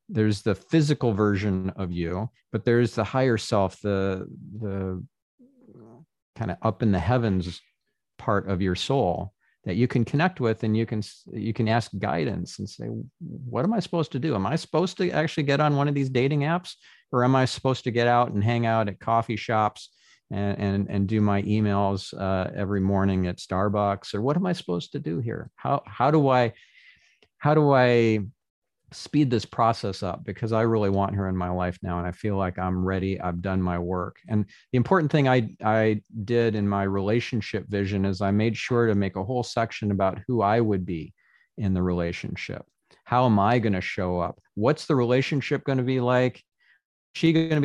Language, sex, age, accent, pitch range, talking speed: English, male, 50-69, American, 95-125 Hz, 205 wpm